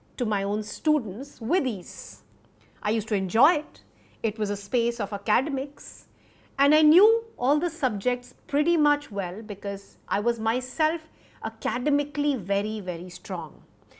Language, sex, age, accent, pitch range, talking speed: English, female, 50-69, Indian, 215-300 Hz, 145 wpm